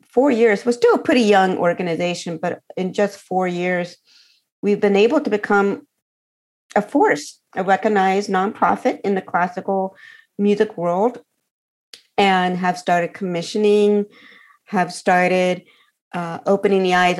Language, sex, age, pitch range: English, female, 50-69, 175-210 Hz